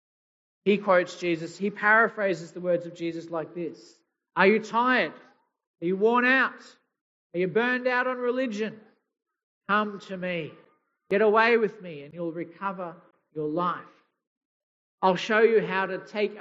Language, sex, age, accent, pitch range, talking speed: English, male, 50-69, Australian, 170-210 Hz, 155 wpm